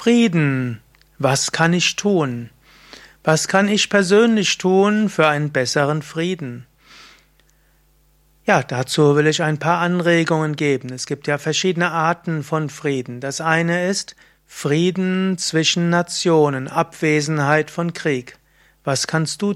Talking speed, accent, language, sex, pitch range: 125 wpm, German, German, male, 145-175 Hz